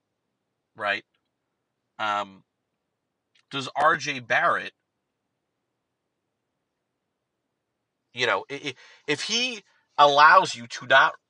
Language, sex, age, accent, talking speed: English, male, 40-59, American, 80 wpm